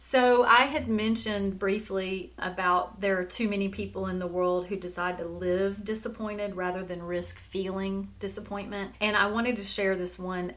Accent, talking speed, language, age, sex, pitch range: American, 175 wpm, English, 30-49, female, 180-205 Hz